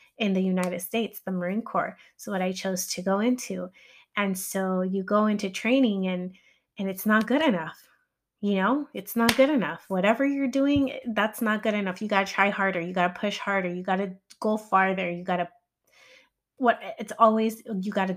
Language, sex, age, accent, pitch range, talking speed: English, female, 20-39, American, 180-215 Hz, 210 wpm